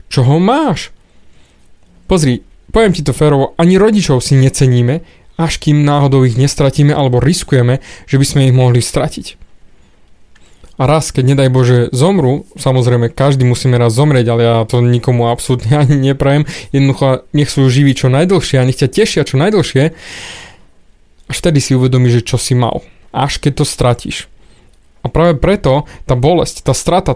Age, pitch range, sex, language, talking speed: 20-39, 125-155 Hz, male, Slovak, 160 wpm